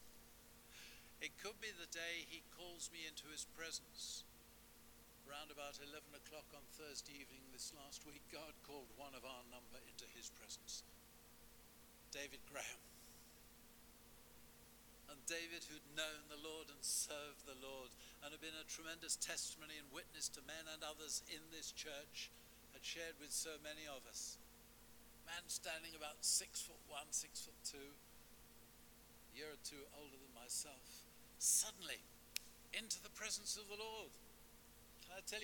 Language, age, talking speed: English, 60-79, 150 wpm